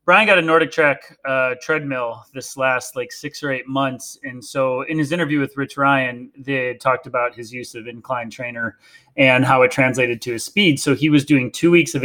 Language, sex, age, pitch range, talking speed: English, male, 30-49, 125-150 Hz, 220 wpm